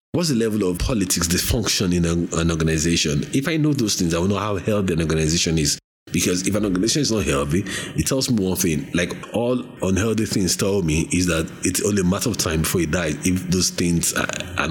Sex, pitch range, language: male, 85-115 Hz, English